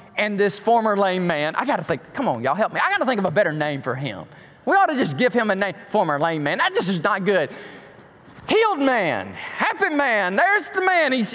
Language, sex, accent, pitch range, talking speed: English, male, American, 145-225 Hz, 255 wpm